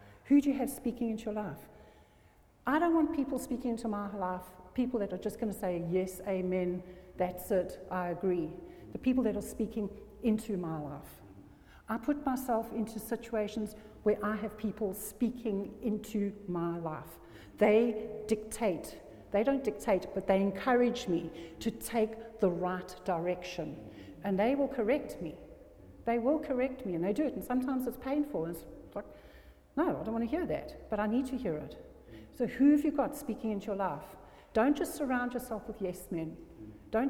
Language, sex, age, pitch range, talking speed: English, female, 60-79, 185-240 Hz, 180 wpm